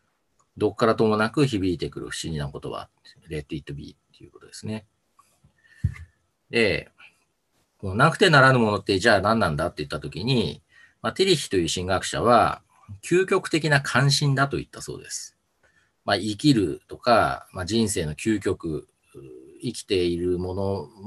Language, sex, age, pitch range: Japanese, male, 40-59, 100-140 Hz